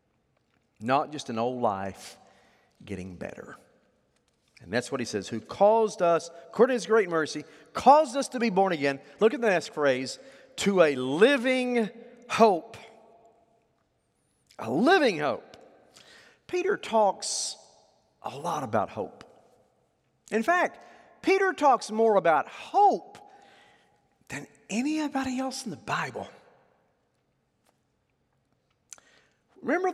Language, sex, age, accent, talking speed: English, male, 40-59, American, 115 wpm